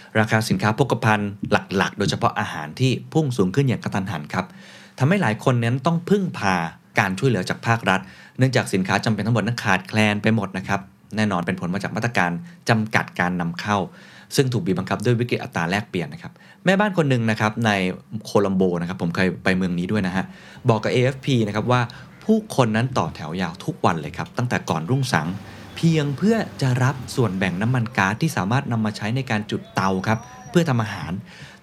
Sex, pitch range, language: male, 95-130 Hz, Thai